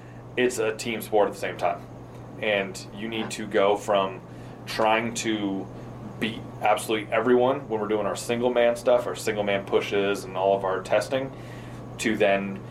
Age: 30-49